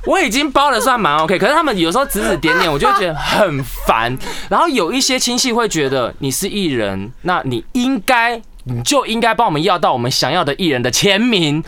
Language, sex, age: Chinese, male, 20-39